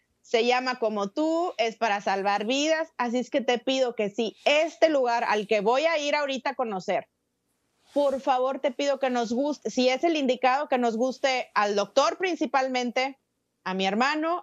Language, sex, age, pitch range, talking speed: Spanish, female, 30-49, 220-265 Hz, 185 wpm